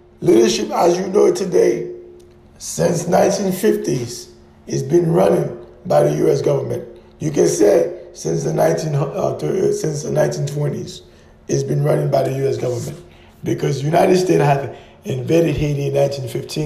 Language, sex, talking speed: English, male, 150 wpm